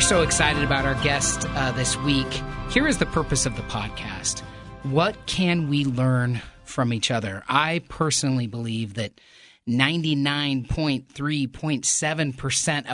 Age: 30-49